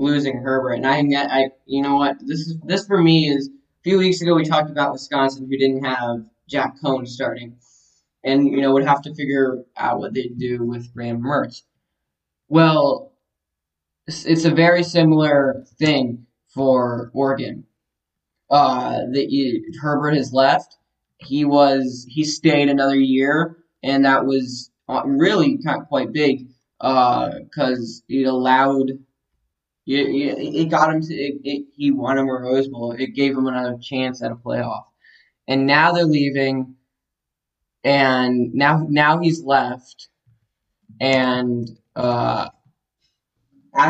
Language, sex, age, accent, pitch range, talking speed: English, male, 10-29, American, 125-150 Hz, 145 wpm